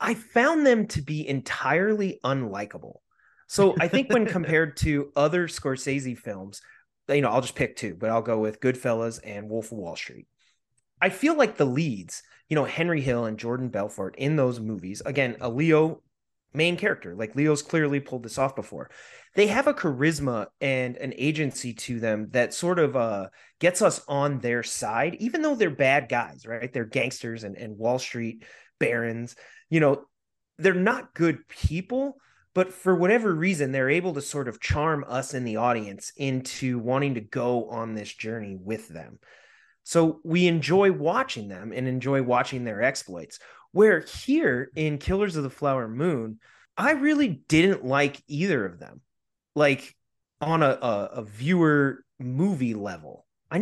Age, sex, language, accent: 30-49, male, English, American